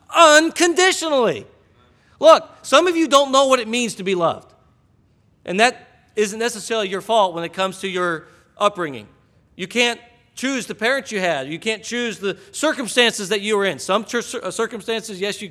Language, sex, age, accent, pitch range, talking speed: English, male, 40-59, American, 175-240 Hz, 175 wpm